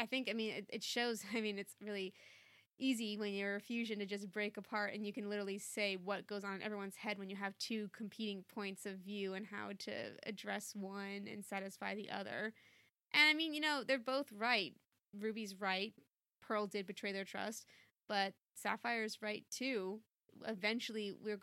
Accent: American